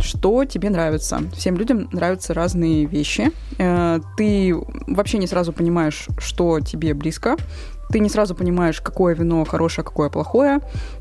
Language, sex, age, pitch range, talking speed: Russian, female, 20-39, 155-195 Hz, 135 wpm